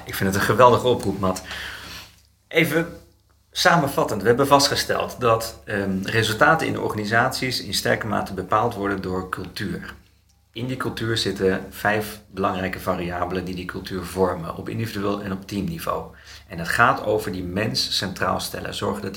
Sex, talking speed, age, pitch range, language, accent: male, 155 wpm, 40-59, 90-115 Hz, Dutch, Dutch